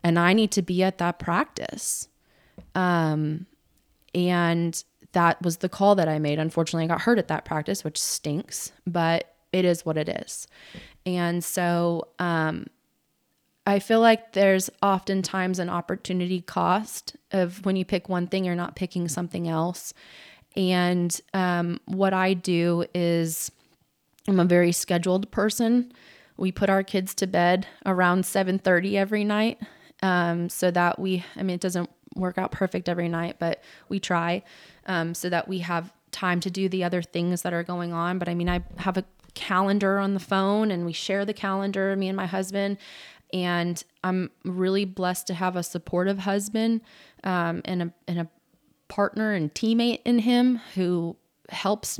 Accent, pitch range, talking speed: American, 170-195 Hz, 170 wpm